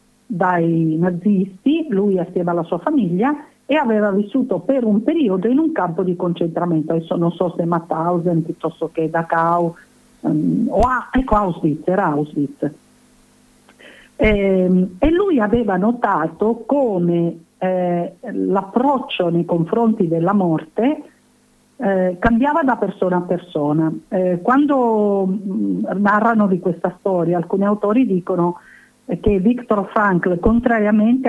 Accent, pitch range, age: native, 175-235 Hz, 50-69